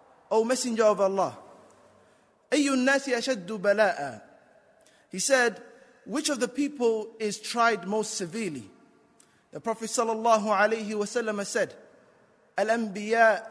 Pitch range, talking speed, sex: 210-245 Hz, 100 wpm, male